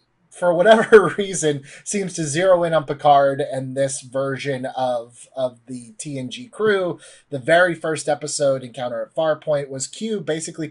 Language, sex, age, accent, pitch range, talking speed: English, male, 30-49, American, 135-165 Hz, 150 wpm